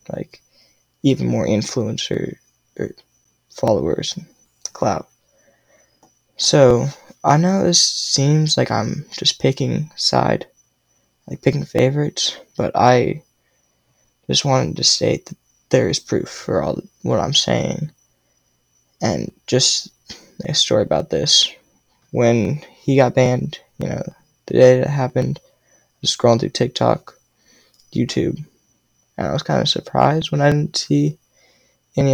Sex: male